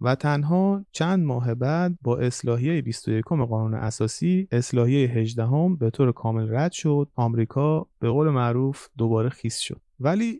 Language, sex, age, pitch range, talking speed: Persian, male, 30-49, 120-160 Hz, 150 wpm